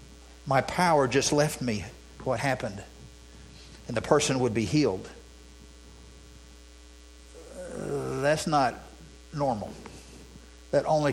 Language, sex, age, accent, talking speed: English, male, 60-79, American, 95 wpm